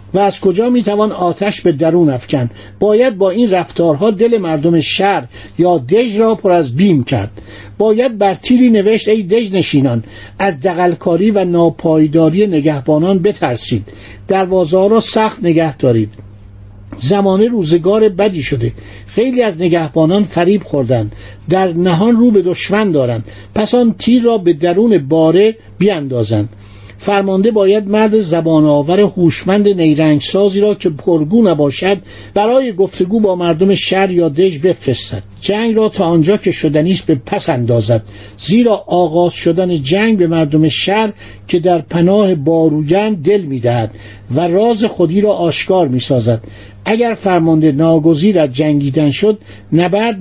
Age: 50-69